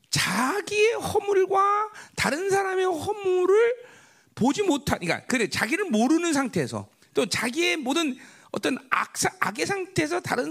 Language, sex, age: Korean, male, 40-59